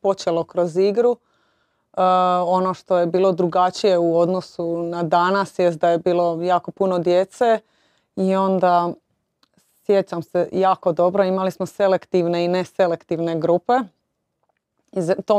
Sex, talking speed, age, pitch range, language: female, 135 wpm, 30-49, 165-185 Hz, Croatian